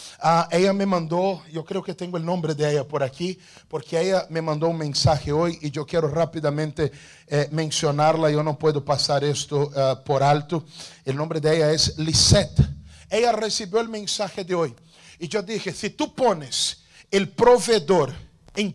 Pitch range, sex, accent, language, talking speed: 150-190 Hz, male, Brazilian, Spanish, 180 wpm